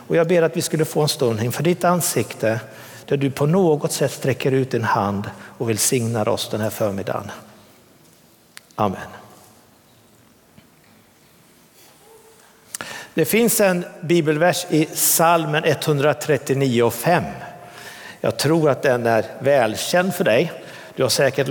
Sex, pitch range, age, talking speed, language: male, 125-170 Hz, 60-79, 130 wpm, Swedish